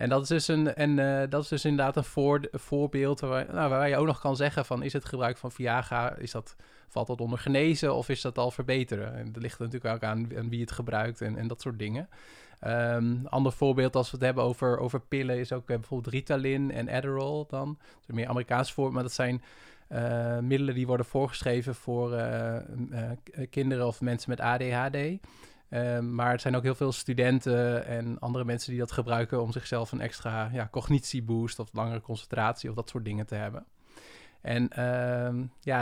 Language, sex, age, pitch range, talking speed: Dutch, male, 20-39, 120-135 Hz, 210 wpm